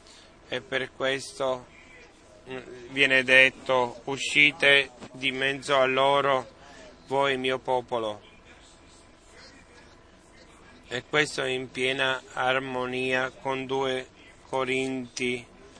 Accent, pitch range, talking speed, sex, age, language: native, 125-135 Hz, 80 wpm, male, 30-49, Italian